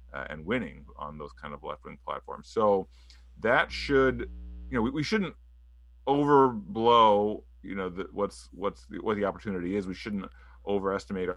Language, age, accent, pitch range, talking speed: English, 30-49, American, 70-105 Hz, 165 wpm